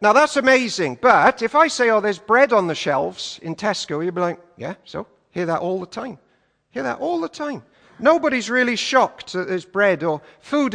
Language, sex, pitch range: English, male, 175-240 Hz